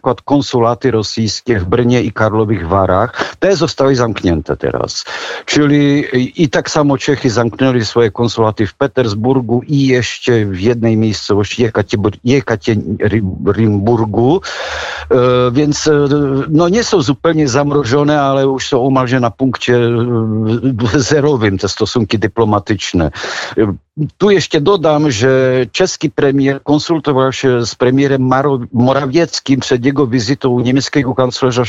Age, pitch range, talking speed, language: 60-79, 115-145 Hz, 115 wpm, Polish